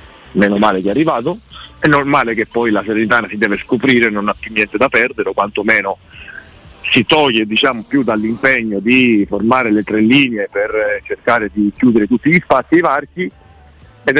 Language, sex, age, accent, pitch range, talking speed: Italian, male, 40-59, native, 110-140 Hz, 180 wpm